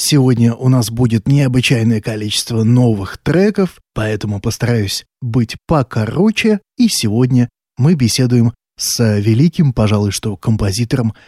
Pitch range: 110-135 Hz